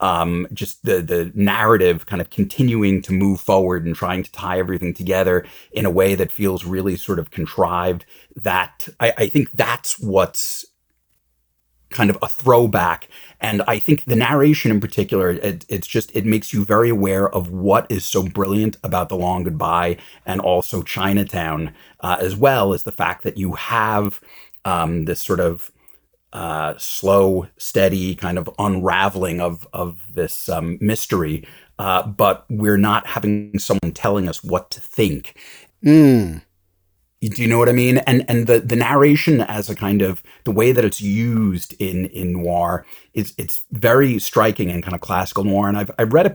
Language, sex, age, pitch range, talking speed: English, male, 30-49, 90-110 Hz, 175 wpm